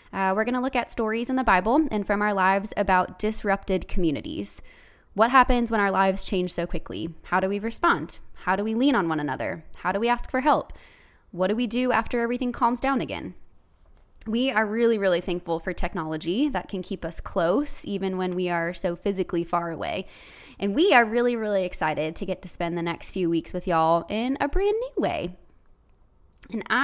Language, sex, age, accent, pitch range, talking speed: English, female, 20-39, American, 180-240 Hz, 210 wpm